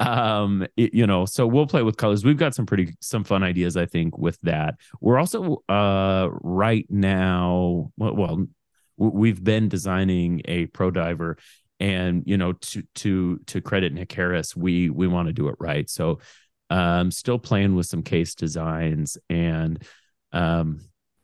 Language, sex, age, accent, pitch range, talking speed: English, male, 30-49, American, 85-100 Hz, 165 wpm